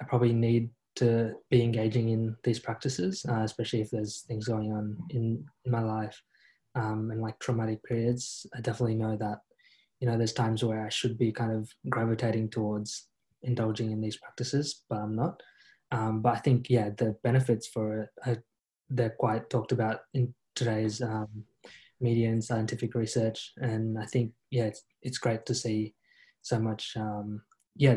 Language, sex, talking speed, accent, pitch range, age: English, male, 175 wpm, Australian, 110-125 Hz, 20-39